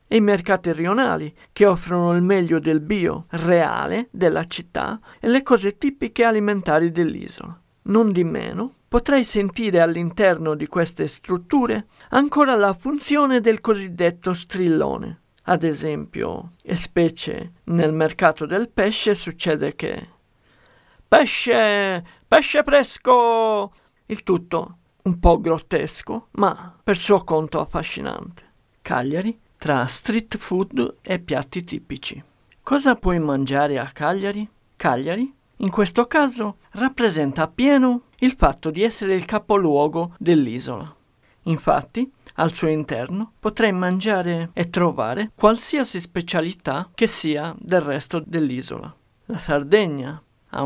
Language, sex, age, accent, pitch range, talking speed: Italian, male, 50-69, native, 160-220 Hz, 120 wpm